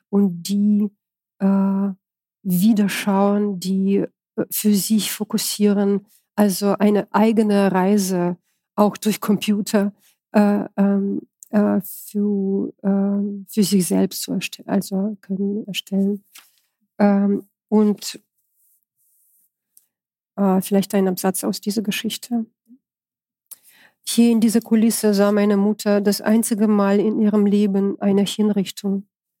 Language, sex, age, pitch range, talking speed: German, female, 40-59, 195-210 Hz, 100 wpm